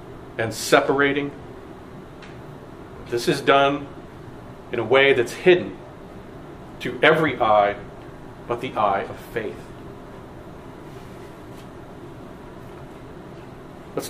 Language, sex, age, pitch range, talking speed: English, male, 40-59, 135-180 Hz, 80 wpm